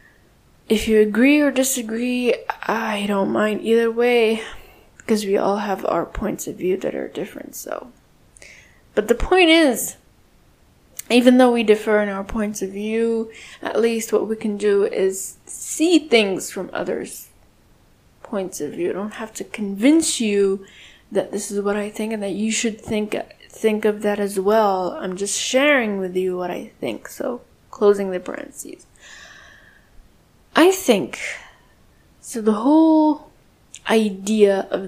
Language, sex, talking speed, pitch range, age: English, female, 155 wpm, 205-250 Hz, 10-29